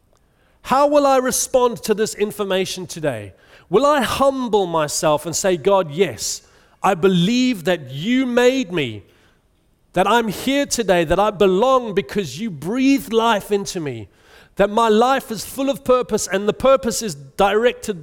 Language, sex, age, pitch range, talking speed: English, male, 40-59, 130-215 Hz, 155 wpm